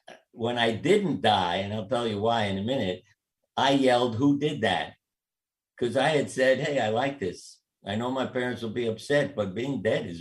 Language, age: English, 60-79